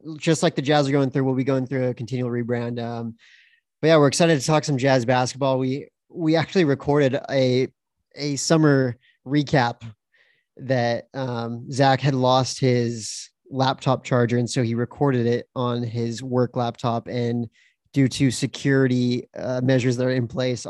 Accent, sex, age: American, male, 30-49